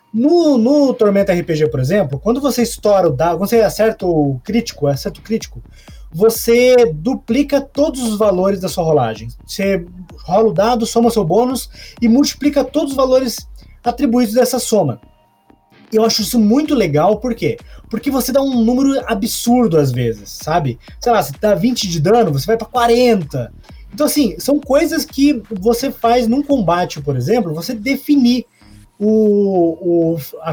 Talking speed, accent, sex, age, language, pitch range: 160 wpm, Brazilian, male, 20-39, Portuguese, 185-255 Hz